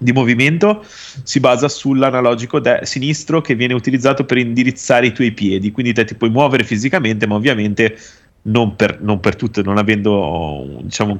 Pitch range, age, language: 105-140 Hz, 30-49, Italian